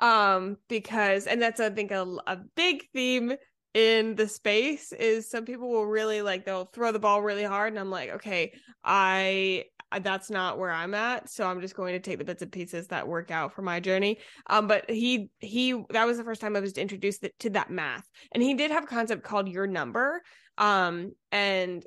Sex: female